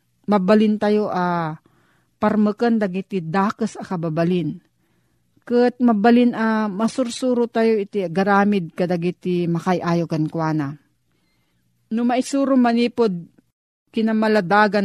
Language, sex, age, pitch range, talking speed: Filipino, female, 40-59, 175-225 Hz, 100 wpm